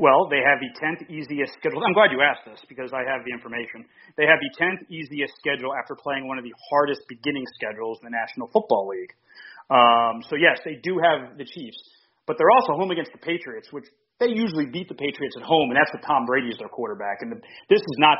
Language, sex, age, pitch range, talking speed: English, male, 30-49, 135-180 Hz, 235 wpm